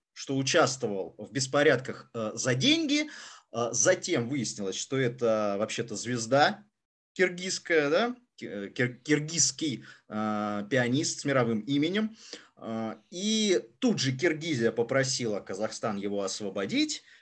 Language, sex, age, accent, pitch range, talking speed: Russian, male, 20-39, native, 125-185 Hz, 90 wpm